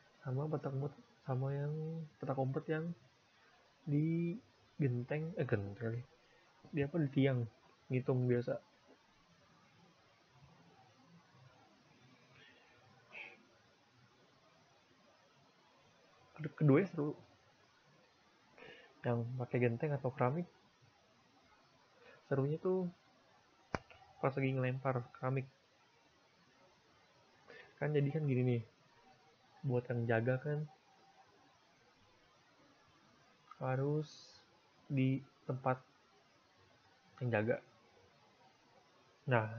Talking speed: 65 wpm